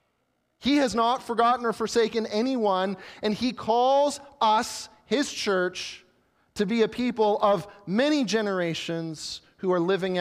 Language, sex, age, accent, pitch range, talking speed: English, male, 30-49, American, 165-210 Hz, 135 wpm